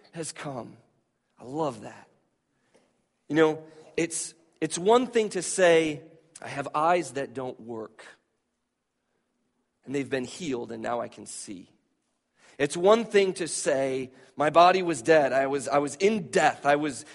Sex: male